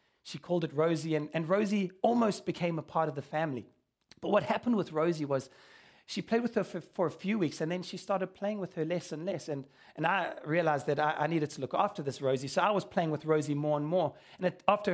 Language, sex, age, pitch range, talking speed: English, male, 30-49, 160-210 Hz, 255 wpm